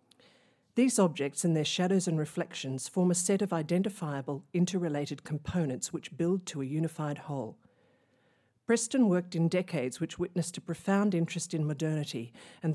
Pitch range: 150-185 Hz